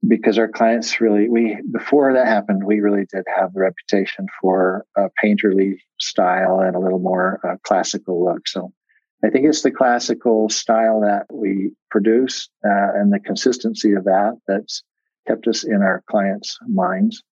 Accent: American